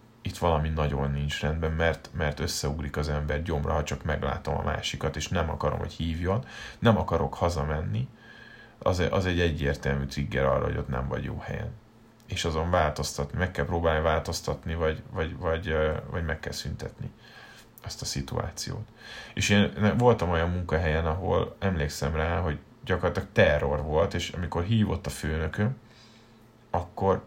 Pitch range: 75-100 Hz